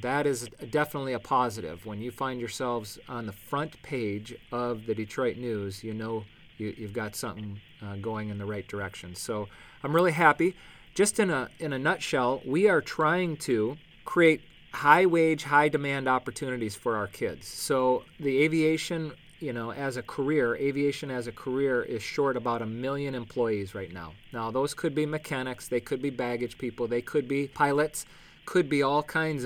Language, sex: English, male